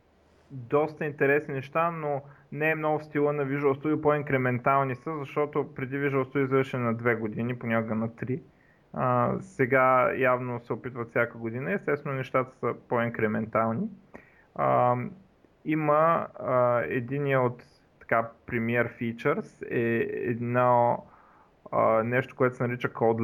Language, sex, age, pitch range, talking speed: Bulgarian, male, 30-49, 115-140 Hz, 135 wpm